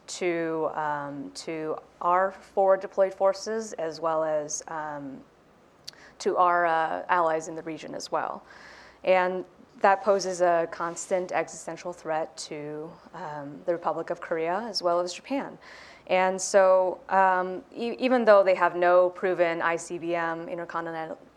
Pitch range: 165-185 Hz